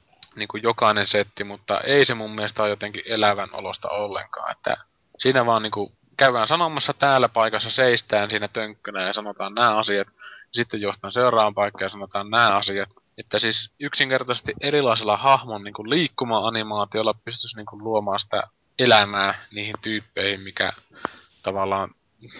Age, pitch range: 20-39, 100-120 Hz